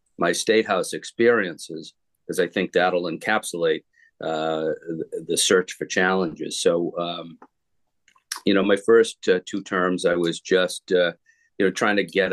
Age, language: 50-69, English